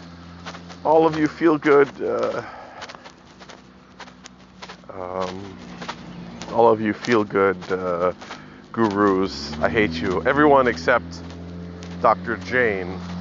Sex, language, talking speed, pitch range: male, English, 95 wpm, 90-105 Hz